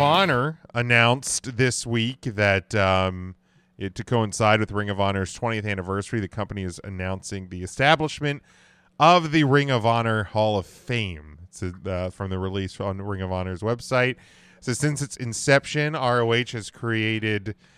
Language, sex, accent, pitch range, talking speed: English, male, American, 100-125 Hz, 155 wpm